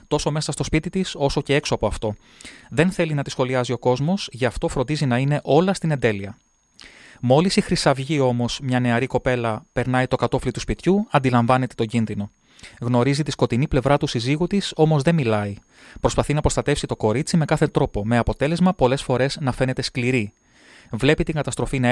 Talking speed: 190 wpm